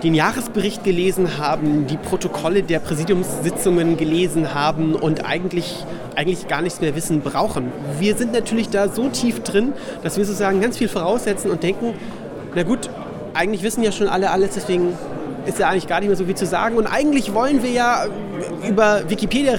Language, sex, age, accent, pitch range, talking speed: German, male, 30-49, German, 170-210 Hz, 180 wpm